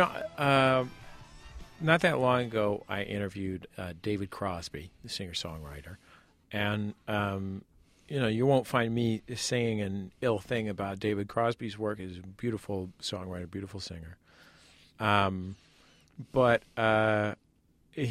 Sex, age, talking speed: male, 40-59, 125 wpm